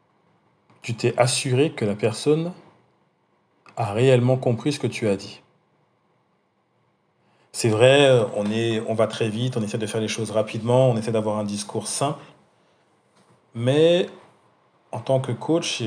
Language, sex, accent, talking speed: French, male, French, 150 wpm